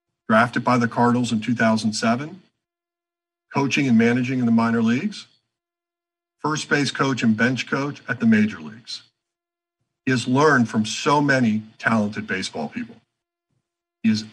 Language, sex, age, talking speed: English, male, 50-69, 140 wpm